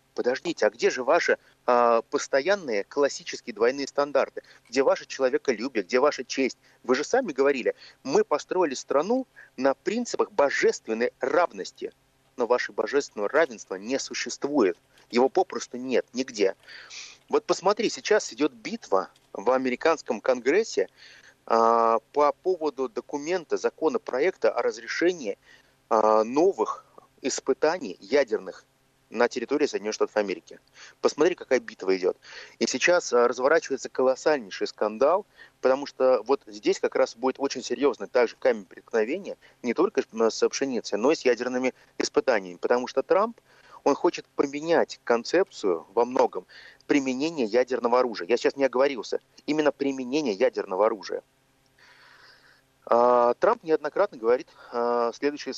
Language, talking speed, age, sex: Russian, 120 wpm, 30-49, male